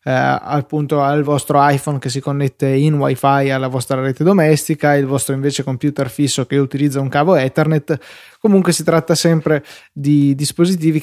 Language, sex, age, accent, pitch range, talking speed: Italian, male, 20-39, native, 145-170 Hz, 160 wpm